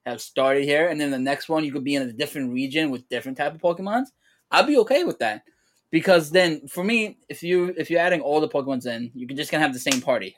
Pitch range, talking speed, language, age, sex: 125-150 Hz, 290 wpm, English, 10-29, male